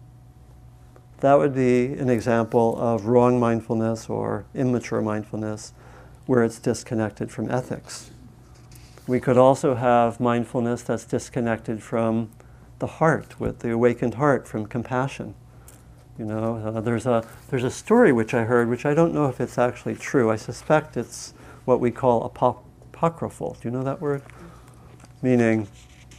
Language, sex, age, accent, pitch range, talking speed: English, male, 50-69, American, 115-130 Hz, 150 wpm